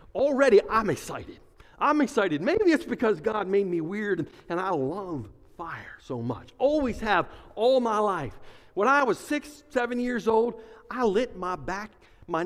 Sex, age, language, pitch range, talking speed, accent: male, 50-69, English, 175-245 Hz, 170 wpm, American